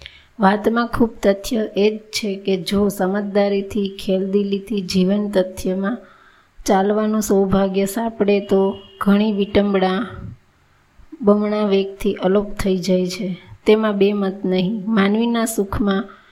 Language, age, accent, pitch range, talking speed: Gujarati, 20-39, native, 190-210 Hz, 105 wpm